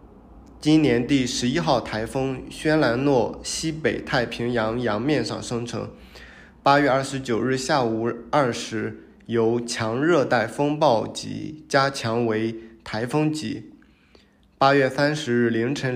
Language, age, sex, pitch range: Chinese, 20-39, male, 115-145 Hz